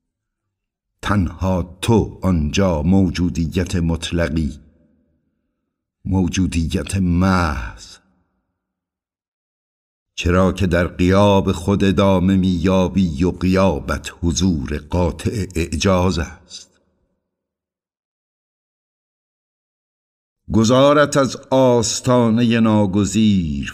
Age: 60-79